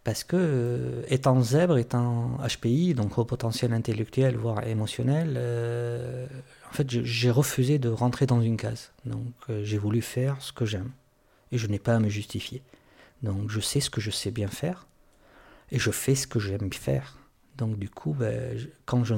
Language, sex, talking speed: French, male, 190 wpm